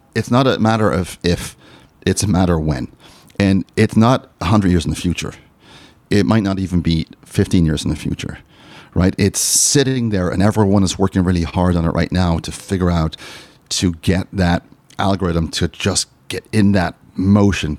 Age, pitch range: 40-59, 85-105 Hz